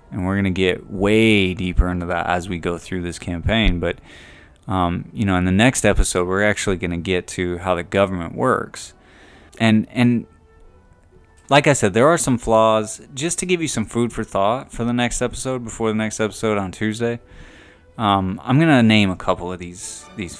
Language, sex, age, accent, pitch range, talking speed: English, male, 20-39, American, 90-115 Hz, 205 wpm